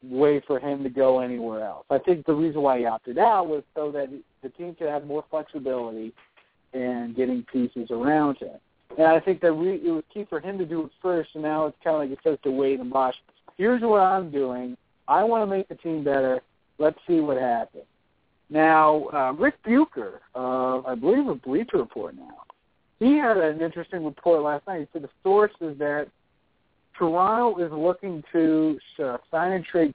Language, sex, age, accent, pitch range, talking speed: English, male, 50-69, American, 135-170 Hz, 205 wpm